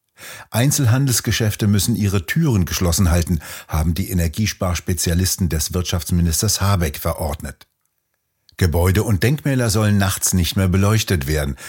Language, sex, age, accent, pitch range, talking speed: German, male, 60-79, German, 85-110 Hz, 115 wpm